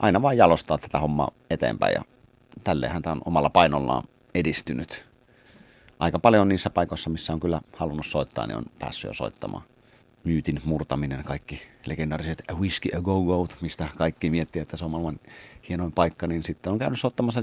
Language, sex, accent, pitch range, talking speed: Finnish, male, native, 75-95 Hz, 165 wpm